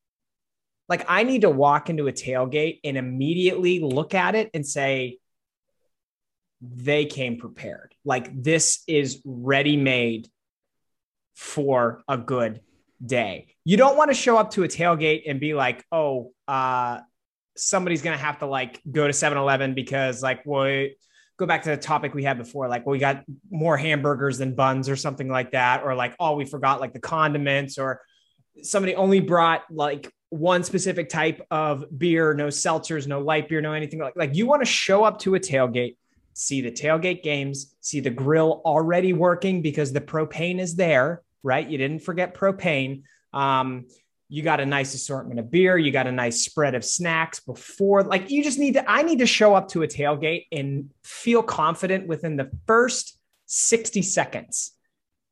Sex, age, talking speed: male, 20-39, 175 wpm